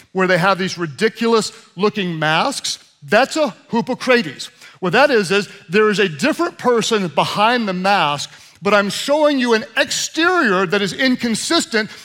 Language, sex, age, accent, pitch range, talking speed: English, male, 40-59, American, 175-245 Hz, 155 wpm